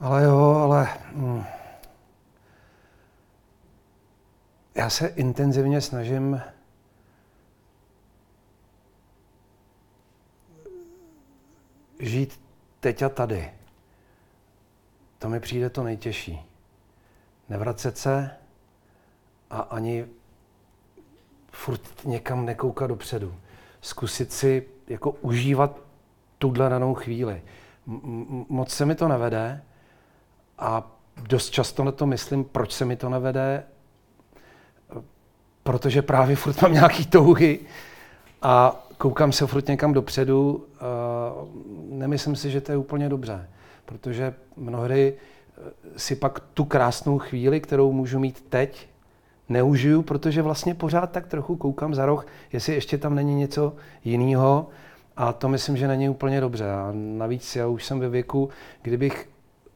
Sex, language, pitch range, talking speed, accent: male, Czech, 110-140 Hz, 110 wpm, native